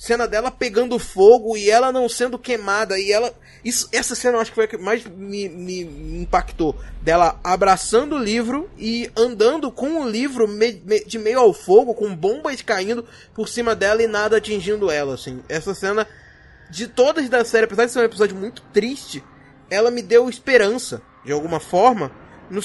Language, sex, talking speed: Portuguese, male, 190 wpm